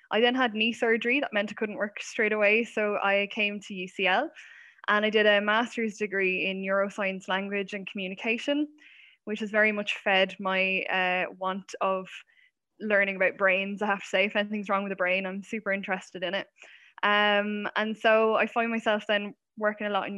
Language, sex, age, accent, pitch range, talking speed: English, female, 10-29, Irish, 200-240 Hz, 195 wpm